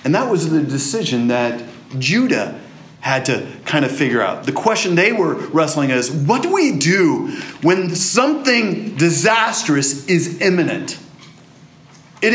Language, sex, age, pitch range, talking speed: English, male, 40-59, 140-215 Hz, 140 wpm